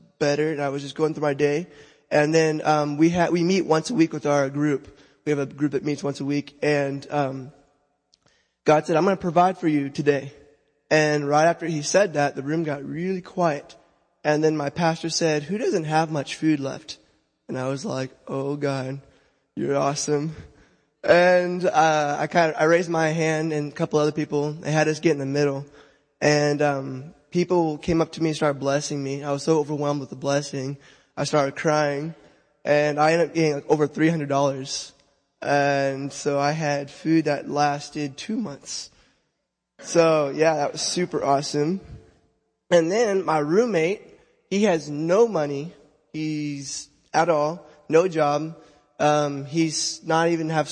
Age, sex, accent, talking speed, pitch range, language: 20-39, male, American, 185 wpm, 145-160 Hz, English